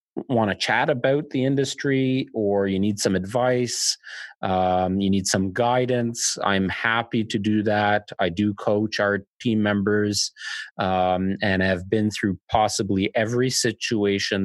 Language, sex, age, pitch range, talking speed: English, male, 30-49, 95-120 Hz, 145 wpm